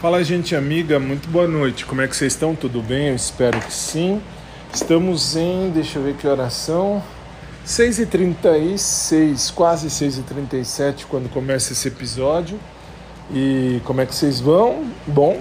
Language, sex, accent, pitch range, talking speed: Portuguese, male, Brazilian, 130-160 Hz, 150 wpm